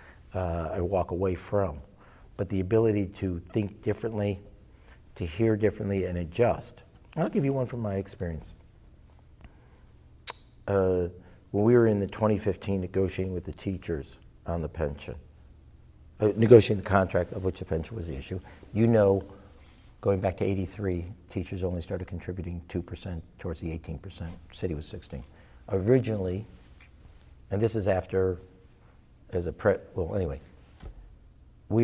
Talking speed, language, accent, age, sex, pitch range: 145 wpm, English, American, 50-69, male, 85-105 Hz